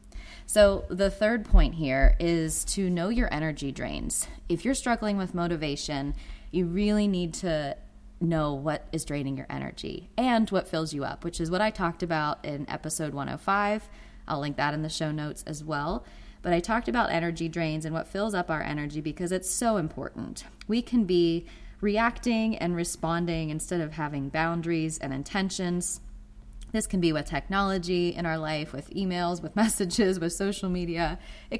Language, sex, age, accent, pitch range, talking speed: English, female, 20-39, American, 155-195 Hz, 175 wpm